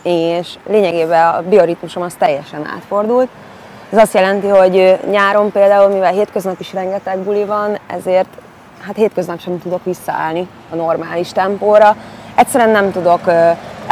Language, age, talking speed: Hungarian, 20-39, 140 wpm